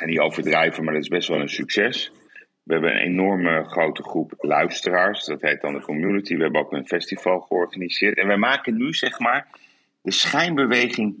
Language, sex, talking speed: Dutch, male, 195 wpm